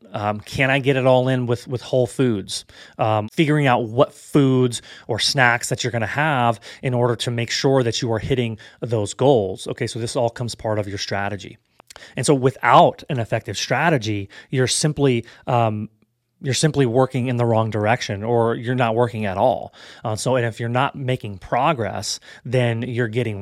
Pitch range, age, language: 110-125 Hz, 30-49, English